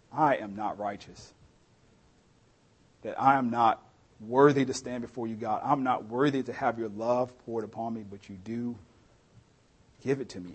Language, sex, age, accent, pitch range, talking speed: English, male, 40-59, American, 105-125 Hz, 175 wpm